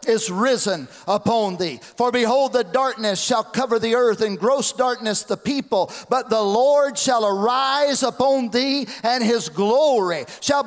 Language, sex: English, male